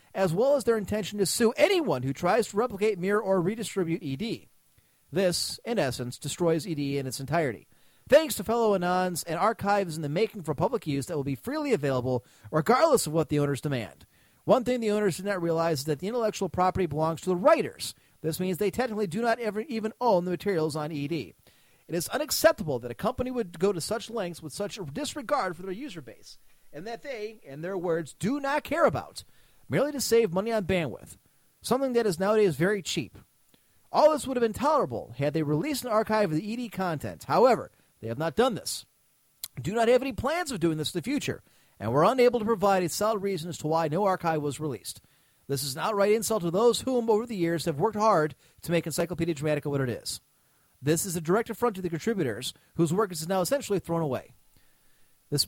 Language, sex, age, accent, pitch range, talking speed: English, male, 40-59, American, 155-220 Hz, 215 wpm